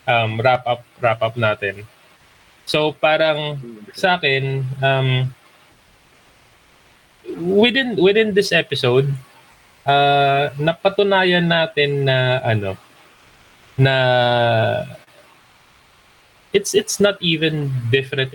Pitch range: 120-160 Hz